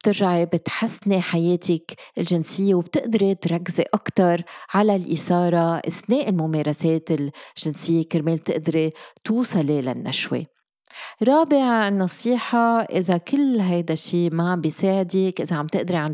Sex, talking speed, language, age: female, 105 wpm, Arabic, 30-49